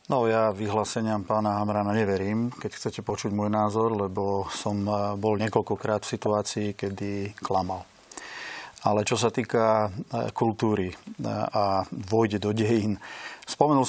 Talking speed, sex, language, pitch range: 125 wpm, male, Slovak, 100-110 Hz